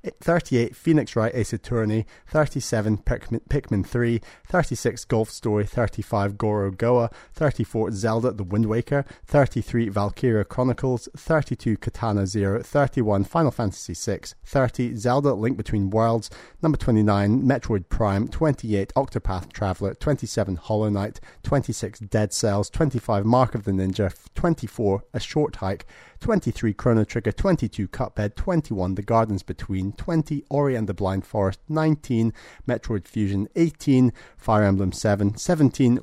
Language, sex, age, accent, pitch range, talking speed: English, male, 30-49, British, 105-135 Hz, 135 wpm